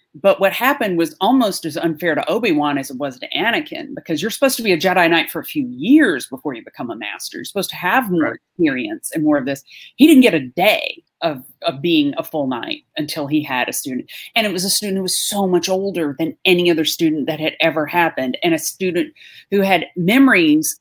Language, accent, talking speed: English, American, 235 wpm